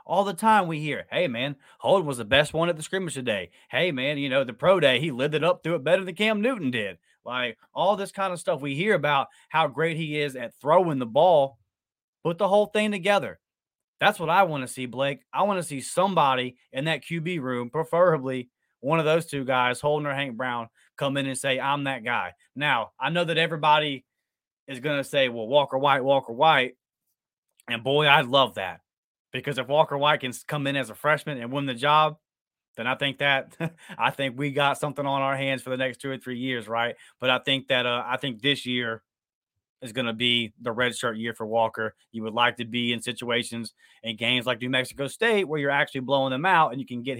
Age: 20-39